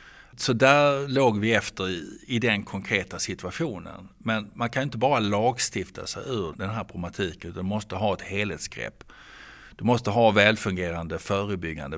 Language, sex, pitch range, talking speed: Swedish, male, 90-105 Hz, 160 wpm